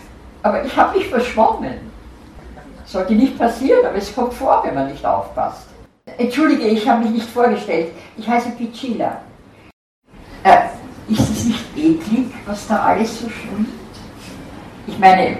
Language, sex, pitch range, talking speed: German, female, 195-260 Hz, 145 wpm